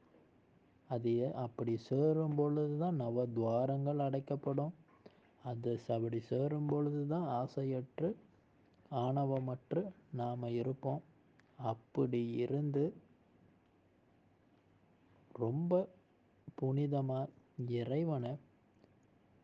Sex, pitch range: male, 115-140 Hz